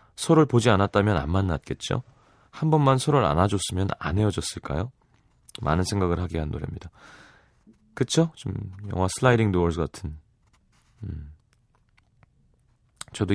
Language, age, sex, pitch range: Korean, 30-49, male, 90-120 Hz